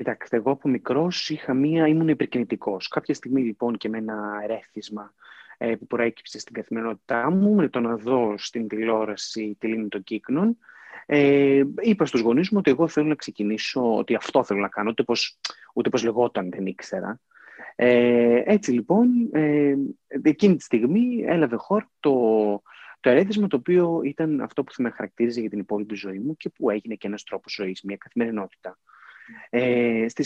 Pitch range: 115-175 Hz